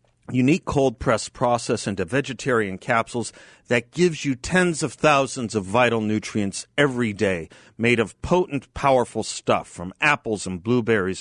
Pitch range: 105-135 Hz